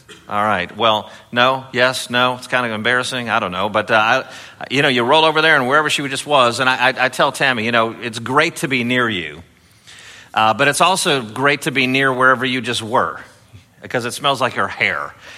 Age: 50-69